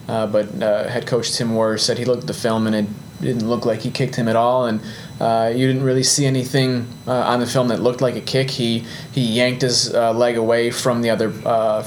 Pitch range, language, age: 105-125 Hz, English, 20-39